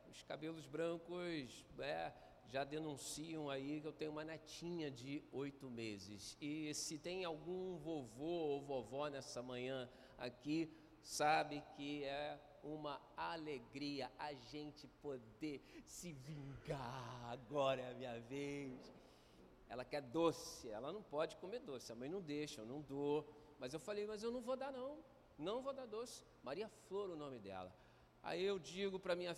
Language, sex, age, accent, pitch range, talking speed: Portuguese, male, 50-69, Brazilian, 135-175 Hz, 155 wpm